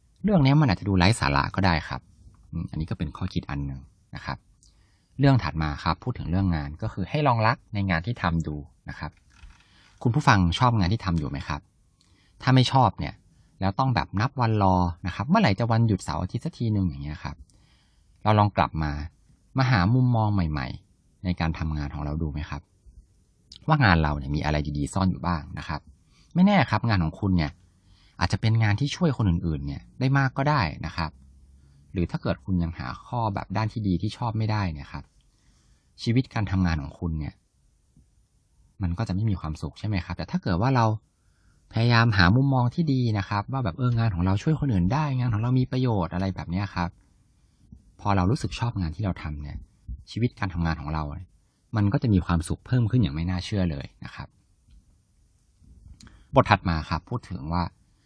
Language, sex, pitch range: English, male, 80-115 Hz